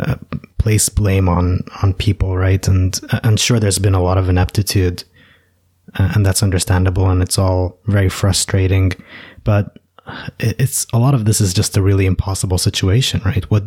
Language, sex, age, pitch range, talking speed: English, male, 20-39, 95-110 Hz, 175 wpm